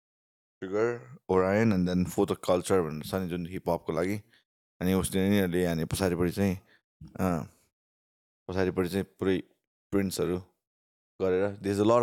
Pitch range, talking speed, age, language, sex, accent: 85-100 Hz, 55 wpm, 20-39, English, male, Indian